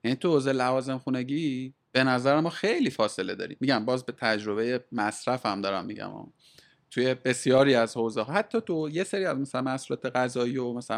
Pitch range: 120-155 Hz